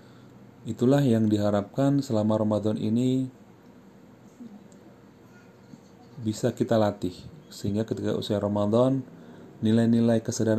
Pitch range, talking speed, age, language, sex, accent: 100-120 Hz, 85 wpm, 30-49, Indonesian, male, native